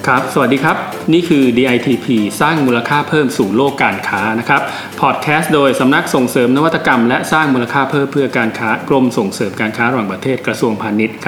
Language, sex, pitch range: Thai, male, 115-140 Hz